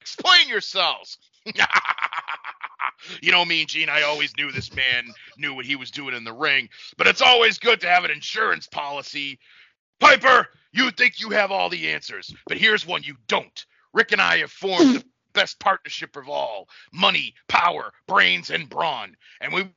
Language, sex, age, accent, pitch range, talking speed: English, male, 40-59, American, 165-225 Hz, 175 wpm